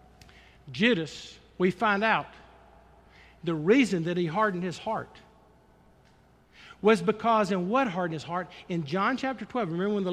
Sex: male